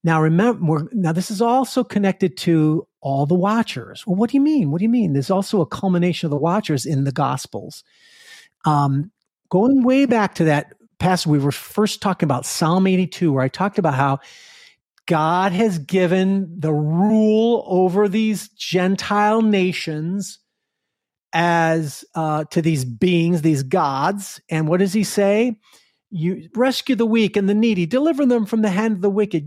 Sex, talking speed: male, 175 wpm